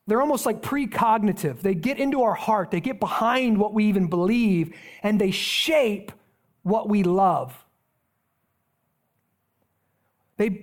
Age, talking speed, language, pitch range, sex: 30-49, 130 wpm, English, 185-225 Hz, male